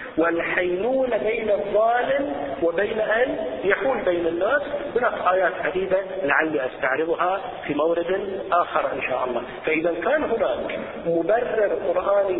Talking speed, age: 115 wpm, 40-59